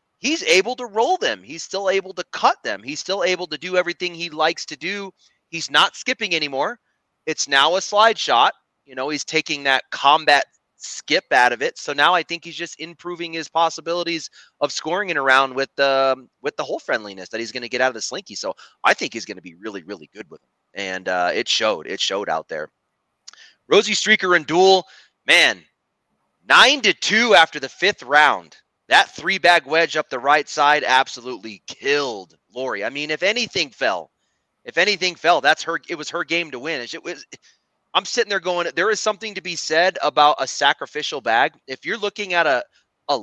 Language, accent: English, American